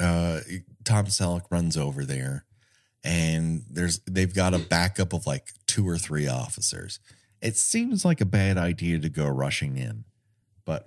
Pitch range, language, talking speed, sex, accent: 90-115 Hz, English, 160 wpm, male, American